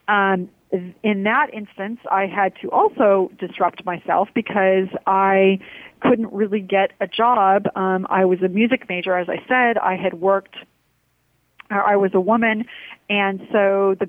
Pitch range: 185-220 Hz